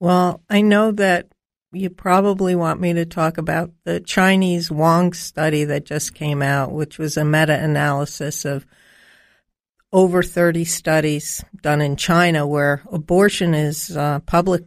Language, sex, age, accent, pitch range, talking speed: English, female, 60-79, American, 155-185 Hz, 145 wpm